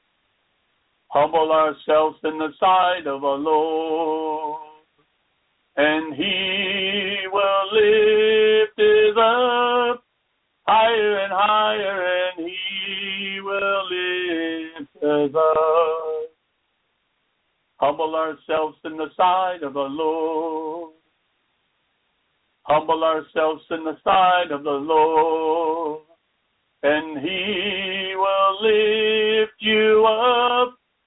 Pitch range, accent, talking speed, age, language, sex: 155-195 Hz, American, 85 wpm, 60-79, English, male